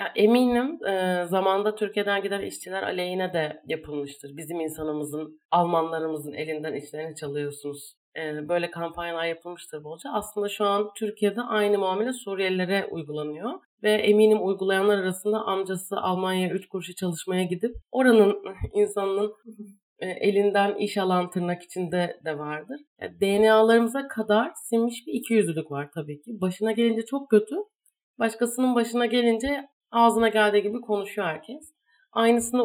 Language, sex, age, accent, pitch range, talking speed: Turkish, female, 30-49, native, 170-215 Hz, 130 wpm